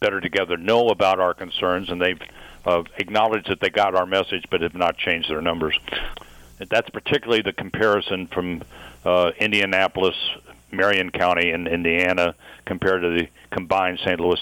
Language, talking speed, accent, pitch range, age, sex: English, 160 wpm, American, 90-110 Hz, 60-79, male